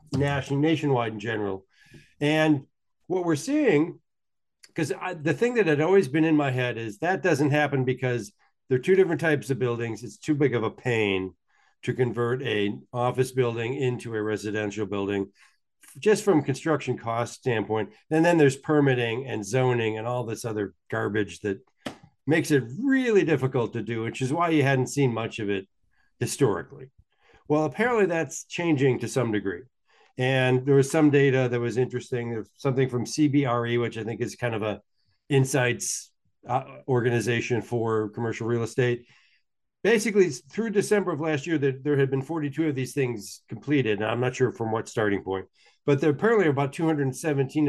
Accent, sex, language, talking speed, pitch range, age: American, male, English, 180 wpm, 110-145 Hz, 50-69